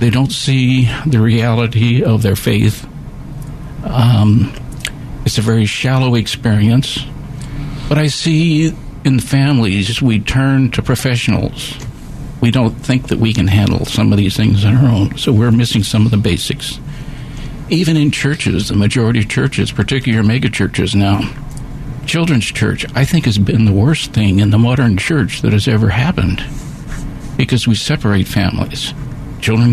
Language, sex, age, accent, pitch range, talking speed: English, male, 60-79, American, 110-140 Hz, 155 wpm